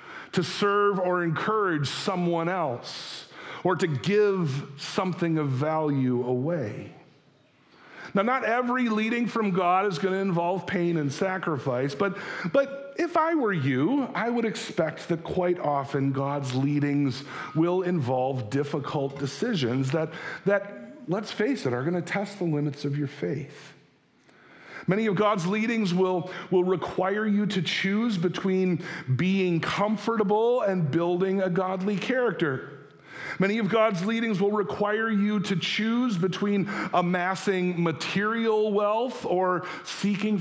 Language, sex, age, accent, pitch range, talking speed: English, male, 50-69, American, 160-210 Hz, 135 wpm